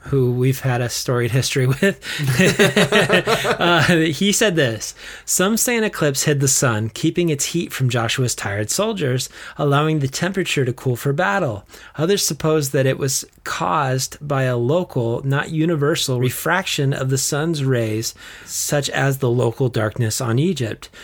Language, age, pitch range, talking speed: English, 30-49, 120-150 Hz, 155 wpm